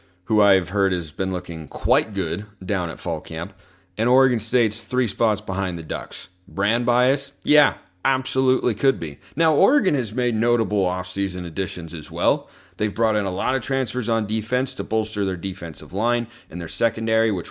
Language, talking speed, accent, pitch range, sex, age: English, 180 wpm, American, 95-125 Hz, male, 30-49